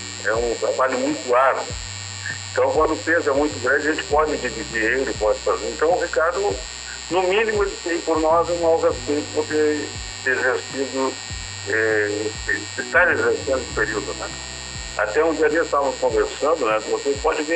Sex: male